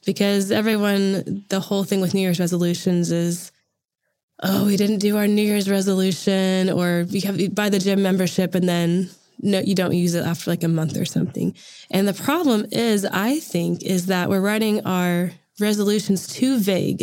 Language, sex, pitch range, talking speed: English, female, 180-210 Hz, 180 wpm